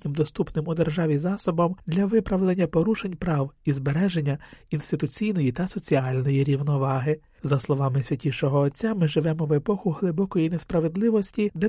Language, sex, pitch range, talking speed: Ukrainian, male, 145-190 Hz, 130 wpm